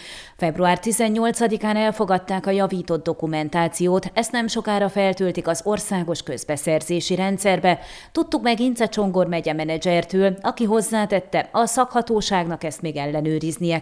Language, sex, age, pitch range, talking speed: Hungarian, female, 30-49, 170-220 Hz, 115 wpm